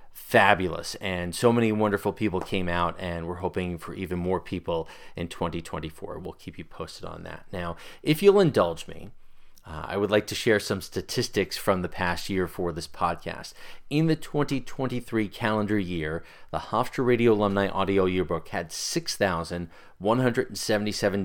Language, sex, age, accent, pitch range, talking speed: English, male, 30-49, American, 90-115 Hz, 160 wpm